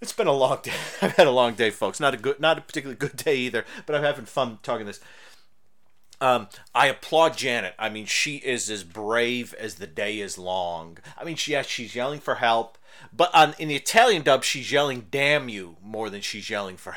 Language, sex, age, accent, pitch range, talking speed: English, male, 40-59, American, 115-155 Hz, 225 wpm